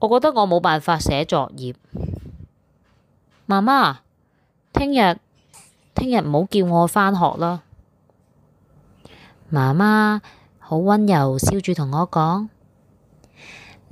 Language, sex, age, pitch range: Chinese, female, 20-39, 150-210 Hz